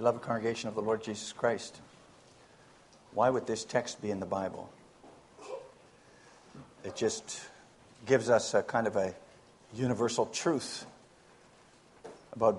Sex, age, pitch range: male, 60-79, 110-135 Hz